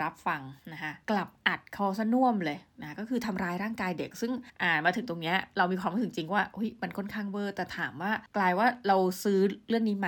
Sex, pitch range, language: female, 175-230 Hz, Thai